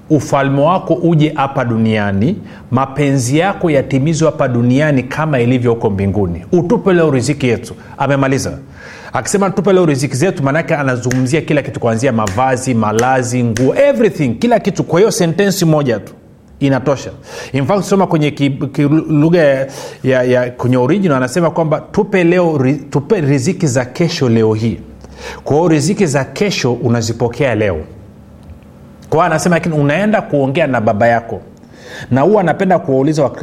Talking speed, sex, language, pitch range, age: 140 wpm, male, Swahili, 120-160 Hz, 30-49